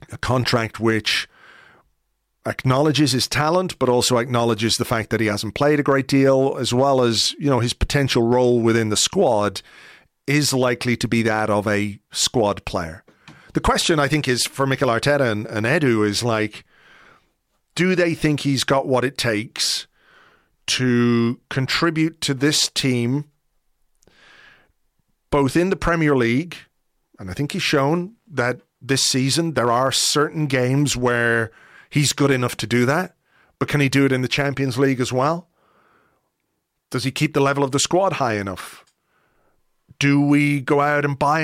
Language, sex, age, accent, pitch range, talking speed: English, male, 40-59, British, 120-145 Hz, 165 wpm